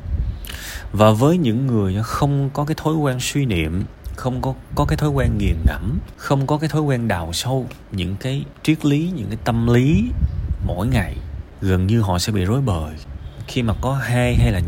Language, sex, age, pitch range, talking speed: Vietnamese, male, 20-39, 90-125 Hz, 200 wpm